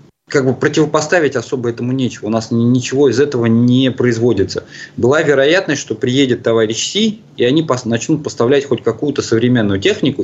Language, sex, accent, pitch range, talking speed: Russian, male, native, 110-140 Hz, 160 wpm